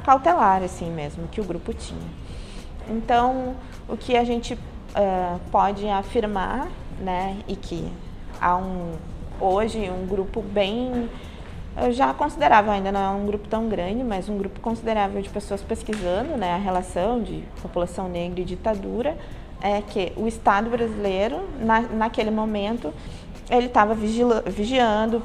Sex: female